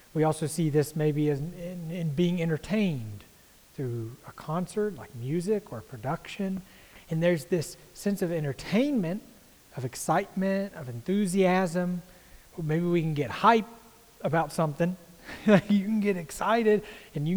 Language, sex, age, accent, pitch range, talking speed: English, male, 30-49, American, 140-195 Hz, 135 wpm